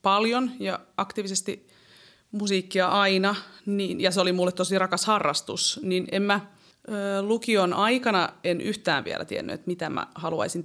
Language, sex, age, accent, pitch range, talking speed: Finnish, female, 30-49, native, 180-230 Hz, 140 wpm